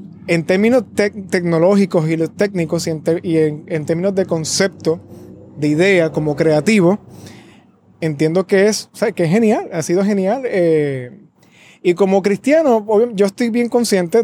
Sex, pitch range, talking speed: male, 165-205 Hz, 160 wpm